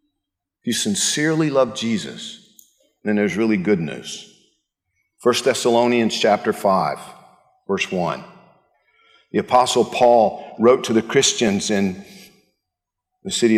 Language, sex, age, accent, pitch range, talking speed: English, male, 50-69, American, 120-195 Hz, 115 wpm